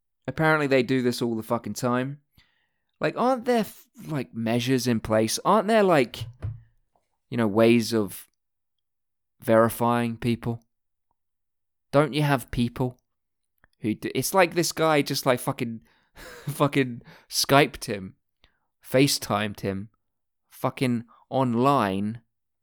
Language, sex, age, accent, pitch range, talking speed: English, male, 20-39, British, 110-150 Hz, 115 wpm